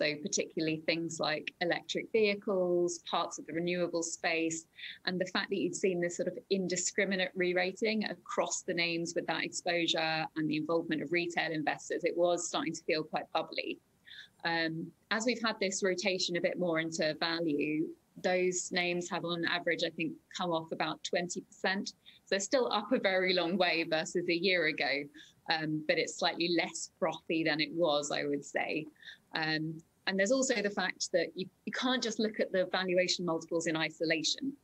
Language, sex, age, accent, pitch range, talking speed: Swedish, female, 20-39, British, 160-185 Hz, 180 wpm